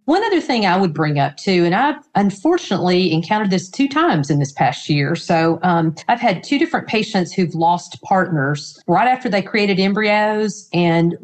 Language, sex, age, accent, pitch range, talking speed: English, female, 40-59, American, 175-225 Hz, 185 wpm